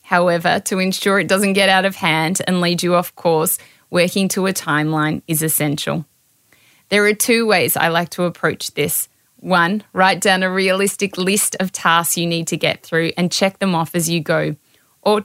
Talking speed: 195 wpm